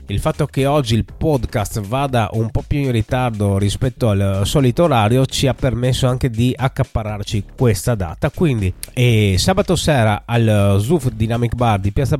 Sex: male